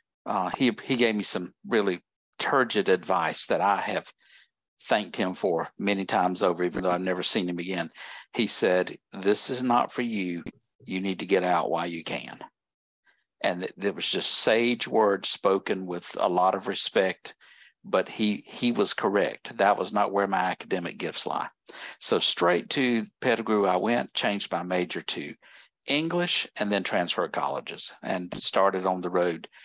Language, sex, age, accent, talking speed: English, male, 60-79, American, 175 wpm